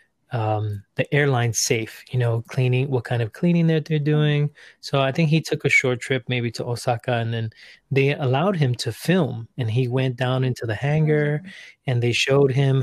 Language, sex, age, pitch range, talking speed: English, male, 20-39, 115-140 Hz, 200 wpm